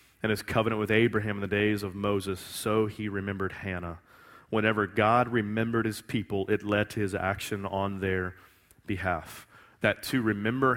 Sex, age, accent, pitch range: male, 30-49, American, 95-110 Hz